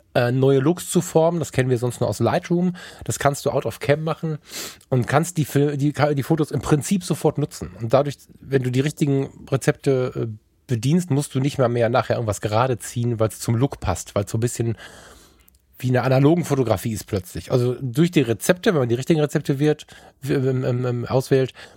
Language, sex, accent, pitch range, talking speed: German, male, German, 115-145 Hz, 200 wpm